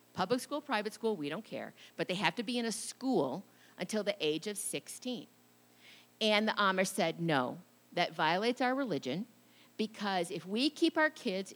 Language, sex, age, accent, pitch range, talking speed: English, female, 50-69, American, 165-235 Hz, 180 wpm